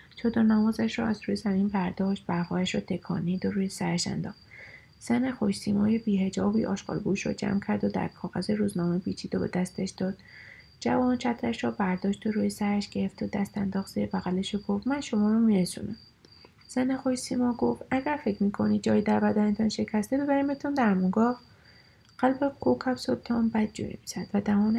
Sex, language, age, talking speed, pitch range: female, Persian, 30-49, 165 wpm, 195-230 Hz